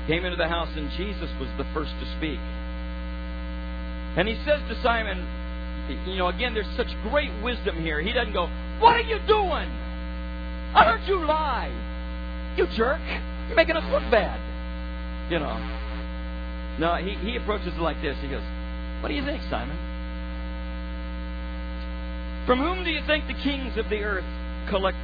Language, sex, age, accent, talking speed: English, male, 50-69, American, 165 wpm